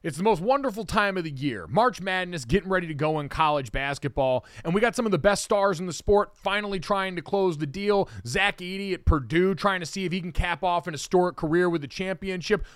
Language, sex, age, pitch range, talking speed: English, male, 30-49, 155-205 Hz, 245 wpm